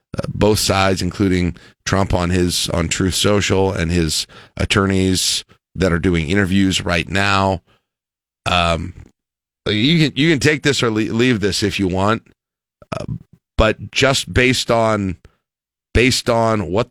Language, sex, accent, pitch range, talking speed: English, male, American, 85-110 Hz, 140 wpm